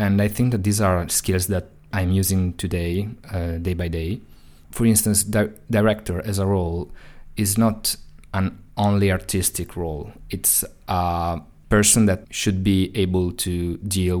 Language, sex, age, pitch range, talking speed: English, male, 20-39, 85-100 Hz, 155 wpm